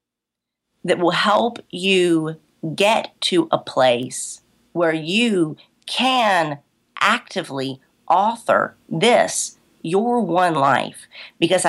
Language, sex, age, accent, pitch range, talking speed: English, female, 40-59, American, 155-210 Hz, 90 wpm